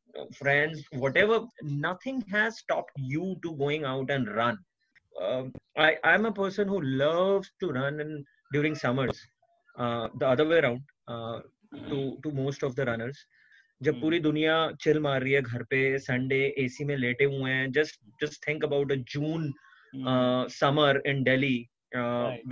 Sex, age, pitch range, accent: male, 20-39, 135-190 Hz, native